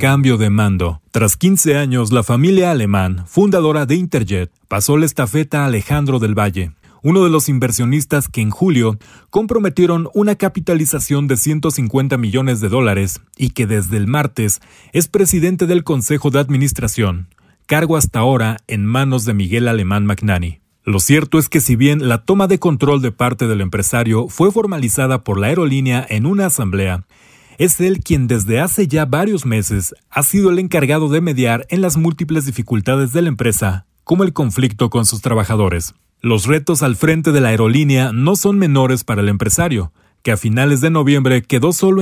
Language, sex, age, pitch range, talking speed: Spanish, male, 40-59, 110-160 Hz, 175 wpm